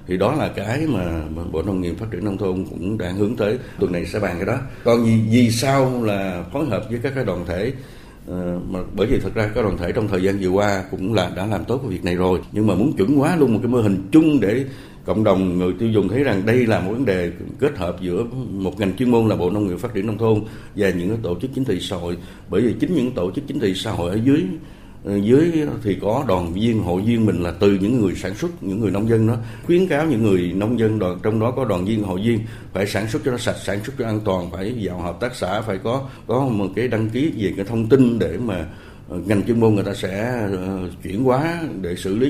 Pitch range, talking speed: 95-120 Hz, 270 wpm